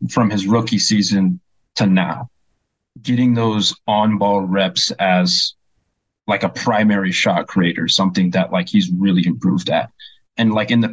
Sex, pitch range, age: male, 100-120 Hz, 20-39